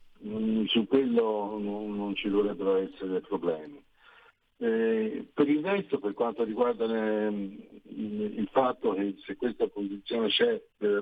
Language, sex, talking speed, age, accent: Italian, male, 115 wpm, 60-79, native